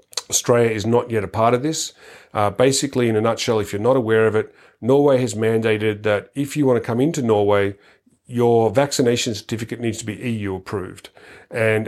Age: 40-59